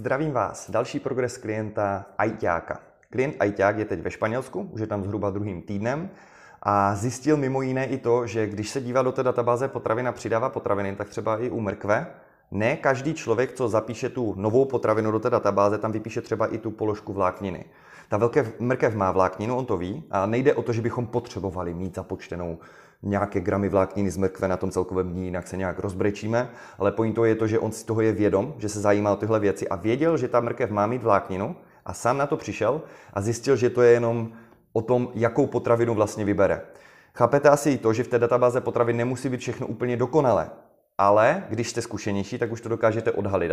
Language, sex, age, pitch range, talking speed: Czech, male, 30-49, 100-125 Hz, 210 wpm